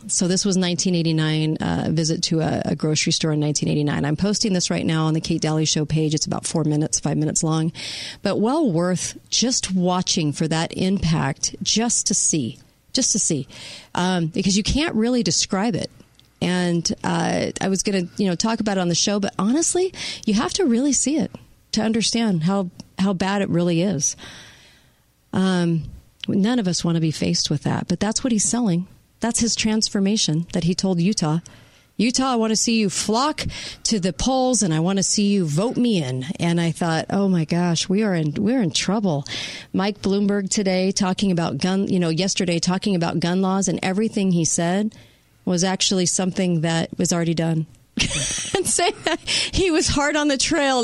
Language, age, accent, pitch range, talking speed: English, 40-59, American, 165-215 Hz, 195 wpm